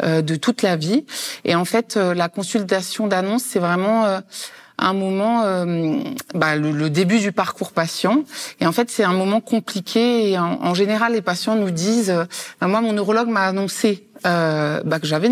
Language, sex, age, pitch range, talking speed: French, female, 30-49, 180-225 Hz, 190 wpm